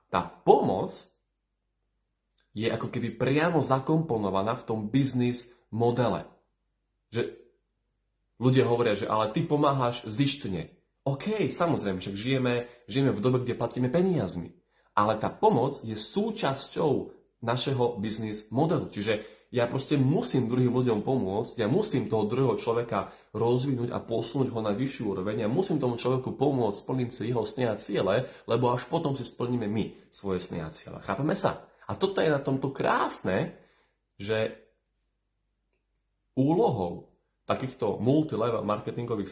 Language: Slovak